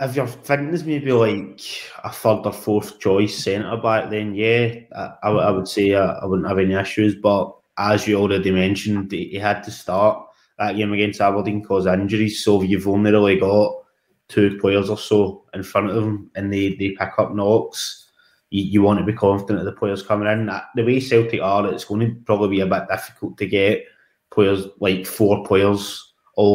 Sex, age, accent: male, 20-39, British